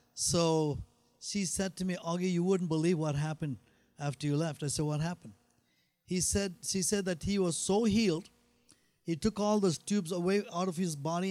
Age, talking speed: 50-69, 195 wpm